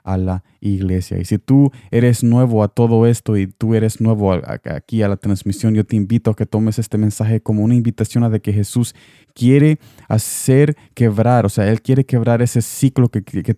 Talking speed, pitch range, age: 205 wpm, 105-120 Hz, 20-39